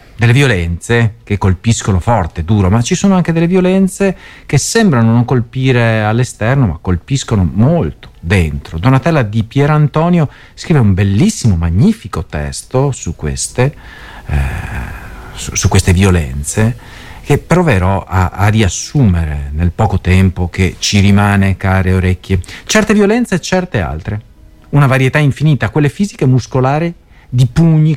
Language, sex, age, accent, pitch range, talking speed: Italian, male, 40-59, native, 95-145 Hz, 125 wpm